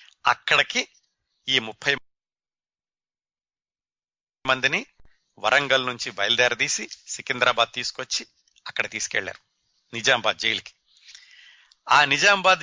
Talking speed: 70 wpm